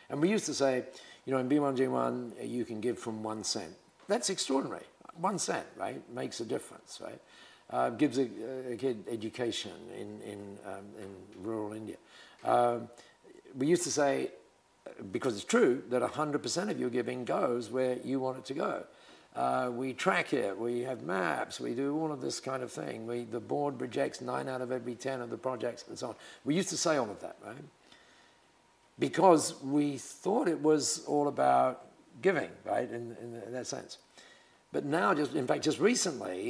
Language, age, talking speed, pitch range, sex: English, 50-69, 190 wpm, 115-135 Hz, male